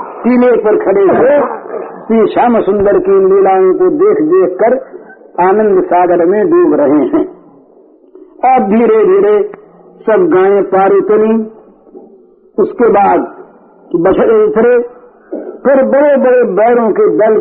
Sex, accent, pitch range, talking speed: male, native, 255-385 Hz, 110 wpm